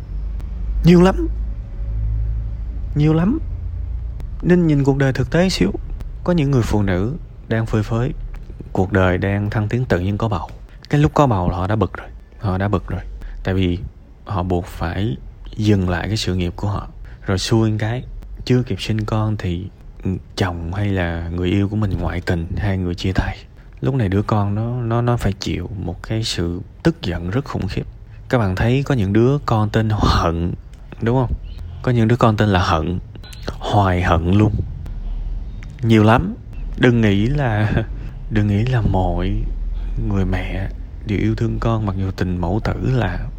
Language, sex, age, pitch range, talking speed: Vietnamese, male, 20-39, 95-115 Hz, 185 wpm